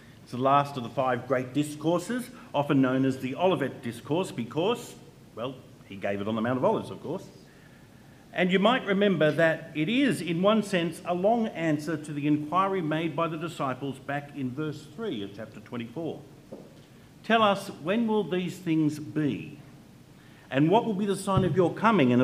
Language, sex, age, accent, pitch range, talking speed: English, male, 50-69, Australian, 135-175 Hz, 190 wpm